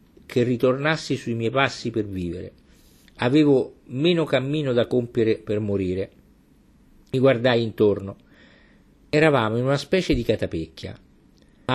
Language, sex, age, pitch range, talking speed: Italian, male, 50-69, 105-145 Hz, 125 wpm